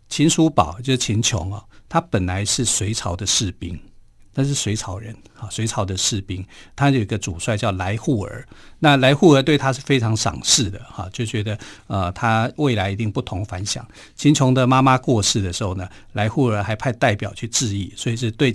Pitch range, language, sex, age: 105-135 Hz, Chinese, male, 50-69